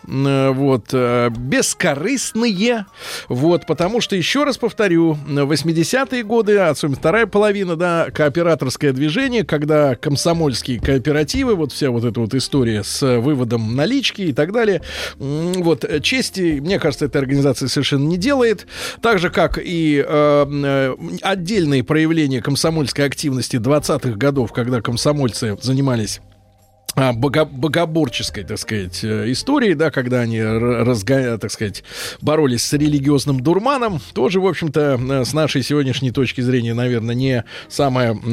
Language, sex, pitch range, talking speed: Russian, male, 130-165 Hz, 125 wpm